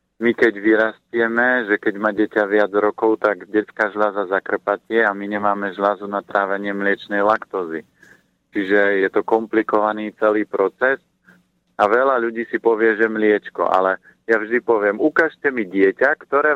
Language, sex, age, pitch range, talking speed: Slovak, male, 50-69, 100-115 Hz, 150 wpm